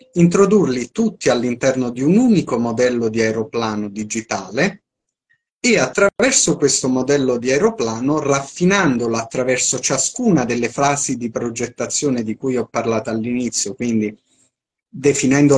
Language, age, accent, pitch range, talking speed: Italian, 30-49, native, 120-155 Hz, 115 wpm